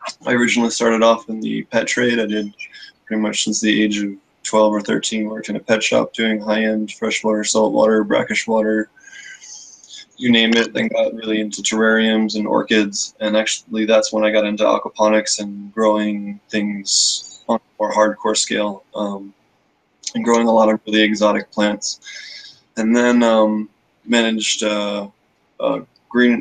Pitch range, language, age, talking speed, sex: 105-110 Hz, English, 20-39, 165 wpm, male